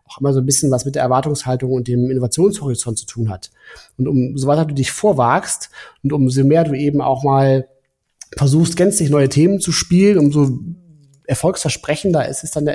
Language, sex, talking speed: German, male, 190 wpm